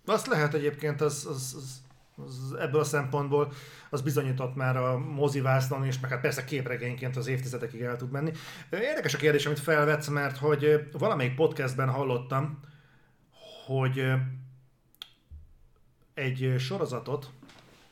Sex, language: male, Hungarian